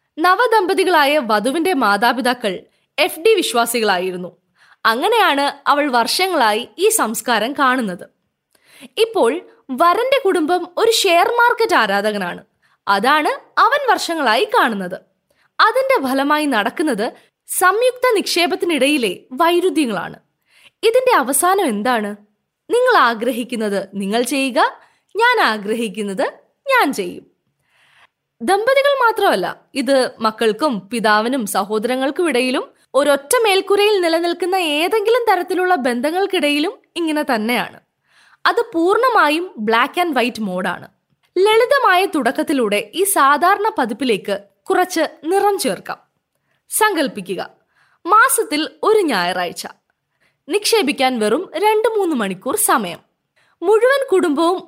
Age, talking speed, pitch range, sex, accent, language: 20-39, 90 wpm, 240-395 Hz, female, native, Malayalam